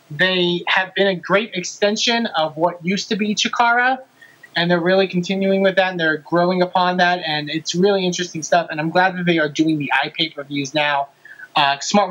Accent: American